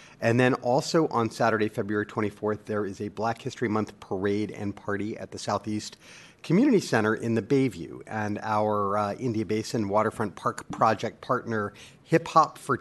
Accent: American